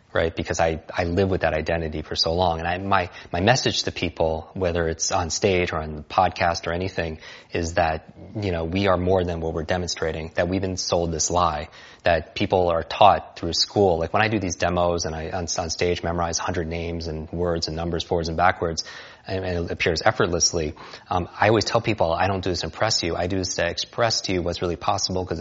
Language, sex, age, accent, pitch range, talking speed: Hindi, male, 30-49, American, 85-95 Hz, 230 wpm